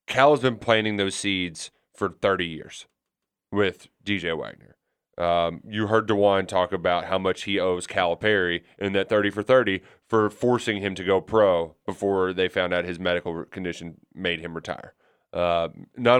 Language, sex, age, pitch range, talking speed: English, male, 30-49, 90-125 Hz, 175 wpm